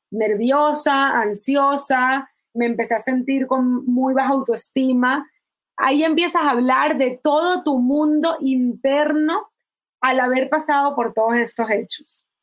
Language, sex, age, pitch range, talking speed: Spanish, female, 20-39, 245-300 Hz, 125 wpm